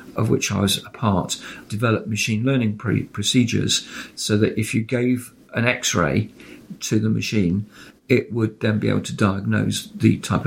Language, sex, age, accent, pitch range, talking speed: English, male, 50-69, British, 110-130 Hz, 170 wpm